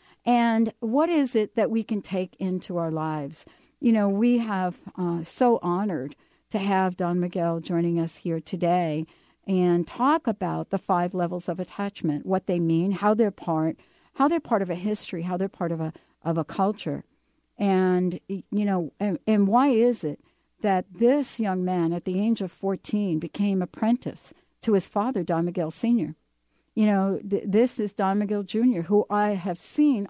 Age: 60-79